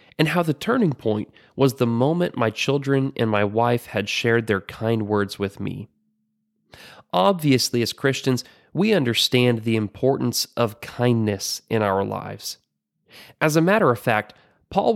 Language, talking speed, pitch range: English, 155 wpm, 105-150 Hz